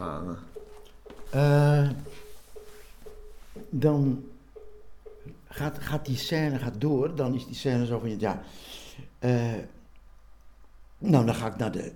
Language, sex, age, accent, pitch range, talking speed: Dutch, male, 60-79, Dutch, 120-165 Hz, 115 wpm